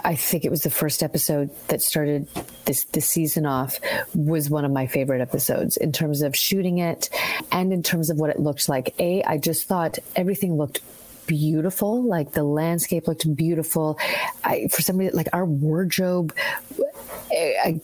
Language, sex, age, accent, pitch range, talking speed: English, female, 30-49, American, 155-190 Hz, 180 wpm